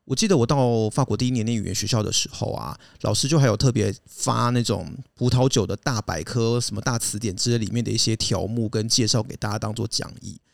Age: 30-49